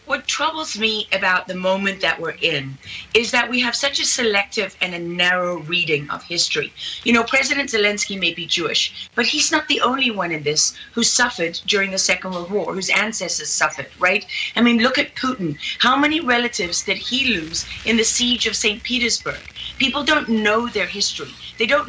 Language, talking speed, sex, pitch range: English, 195 wpm, female, 185-240 Hz